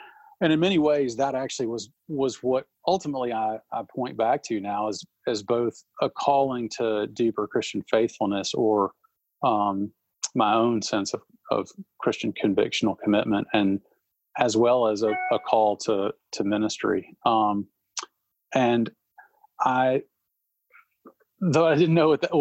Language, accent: English, American